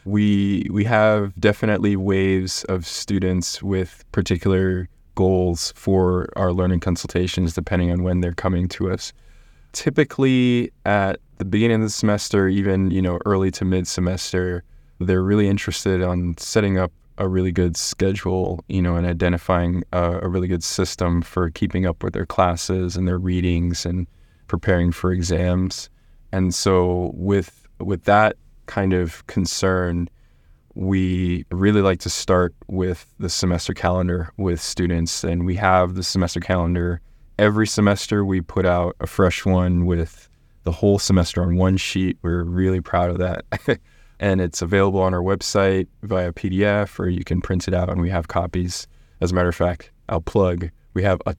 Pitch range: 85-95 Hz